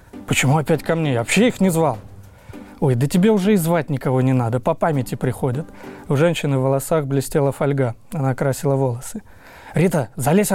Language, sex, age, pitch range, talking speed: Russian, male, 20-39, 130-170 Hz, 180 wpm